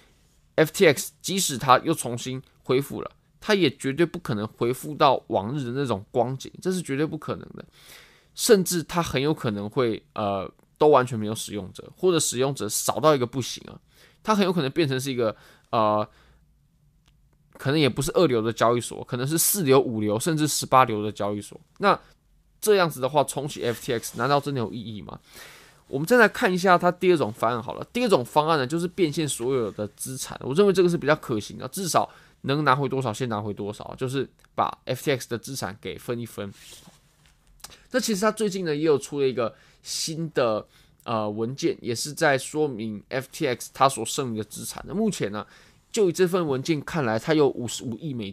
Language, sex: Chinese, male